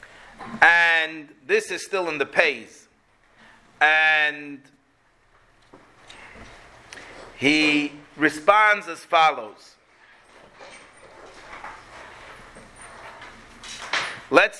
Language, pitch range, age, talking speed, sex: English, 175-260 Hz, 40-59, 55 wpm, male